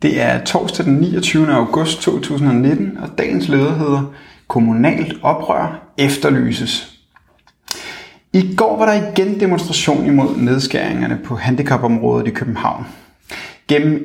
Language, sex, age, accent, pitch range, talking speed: Danish, male, 30-49, native, 125-155 Hz, 115 wpm